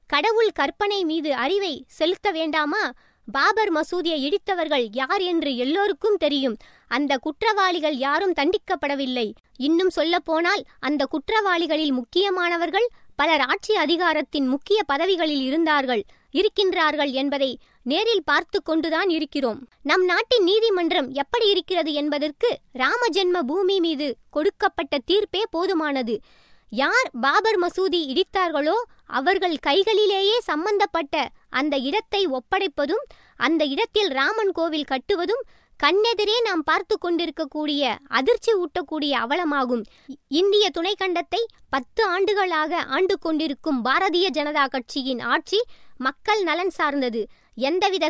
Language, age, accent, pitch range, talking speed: Tamil, 20-39, native, 290-390 Hz, 95 wpm